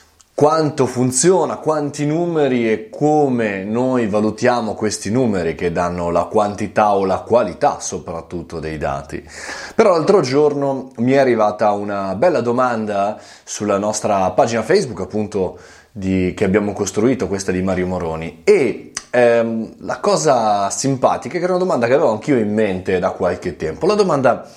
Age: 20-39